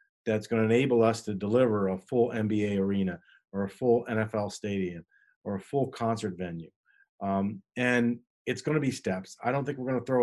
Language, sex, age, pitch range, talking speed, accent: English, male, 40-59, 105-120 Hz, 190 wpm, American